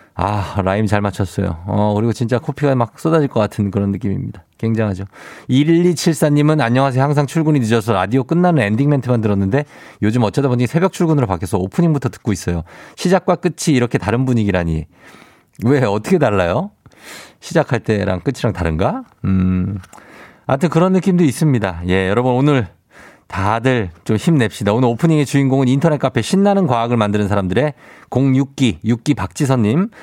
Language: Korean